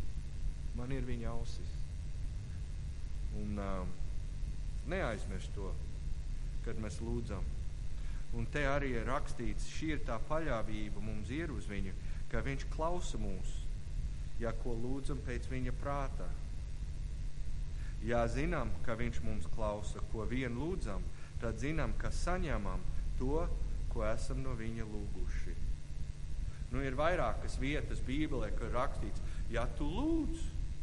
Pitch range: 75-120 Hz